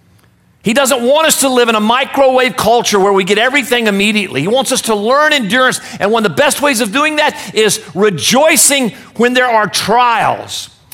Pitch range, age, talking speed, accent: 200-280 Hz, 50-69, 195 wpm, American